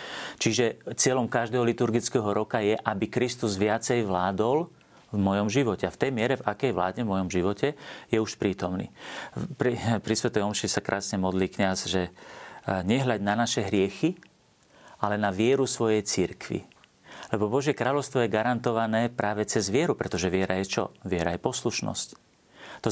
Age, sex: 40-59, male